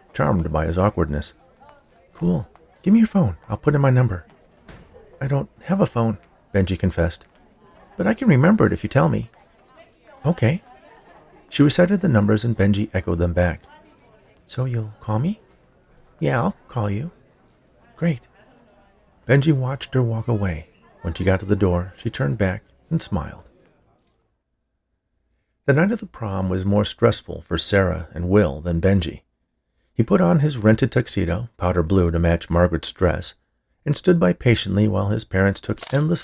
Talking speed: 165 wpm